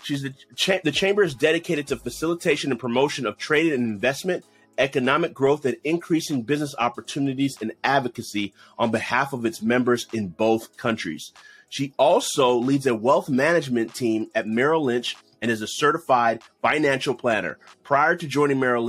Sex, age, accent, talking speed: male, 30-49, American, 155 wpm